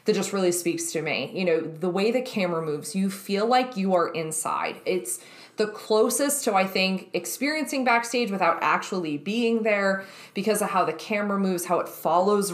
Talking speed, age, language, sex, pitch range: 190 wpm, 20-39, English, female, 170-215 Hz